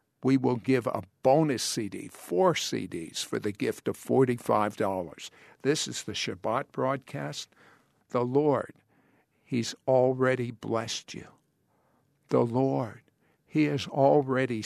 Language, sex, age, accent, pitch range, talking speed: English, male, 60-79, American, 120-160 Hz, 120 wpm